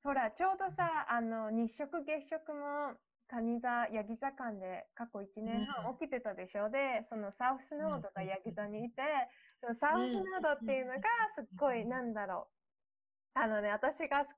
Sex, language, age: female, Japanese, 20-39